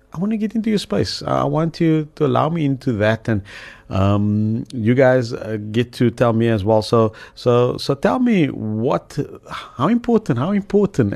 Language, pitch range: English, 95-130 Hz